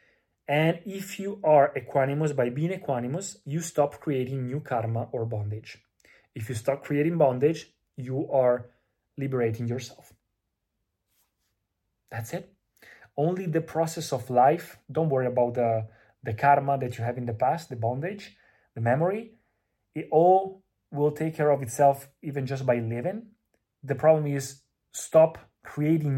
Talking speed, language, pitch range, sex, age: 145 wpm, Italian, 125-155 Hz, male, 30-49